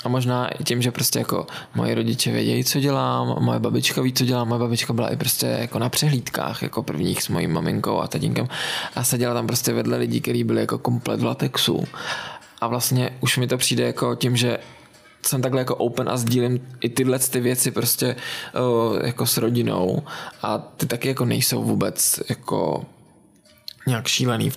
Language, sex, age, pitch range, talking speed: Czech, male, 20-39, 120-130 Hz, 190 wpm